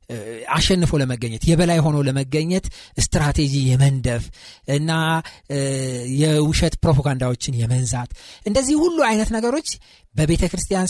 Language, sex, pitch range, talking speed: Amharic, male, 125-165 Hz, 90 wpm